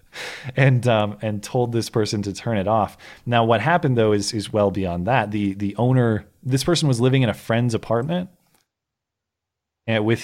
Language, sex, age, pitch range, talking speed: English, male, 30-49, 95-130 Hz, 190 wpm